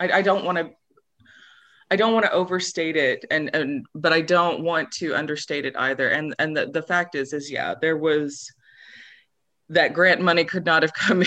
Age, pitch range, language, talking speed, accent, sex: 20-39, 135-165 Hz, English, 195 wpm, American, female